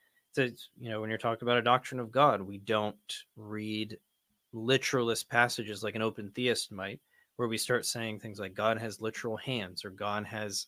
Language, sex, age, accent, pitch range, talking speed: English, male, 20-39, American, 105-125 Hz, 185 wpm